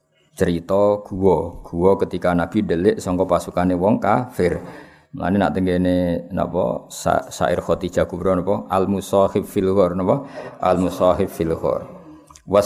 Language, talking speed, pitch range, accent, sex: Indonesian, 125 wpm, 90-110 Hz, native, male